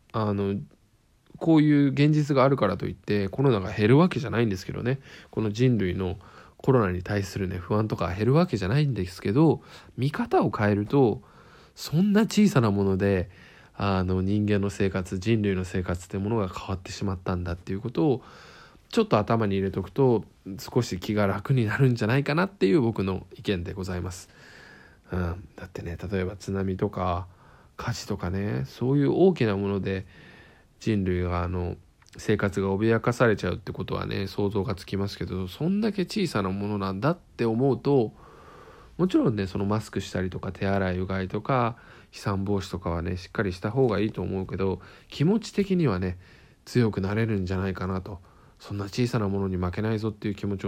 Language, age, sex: Japanese, 20-39, male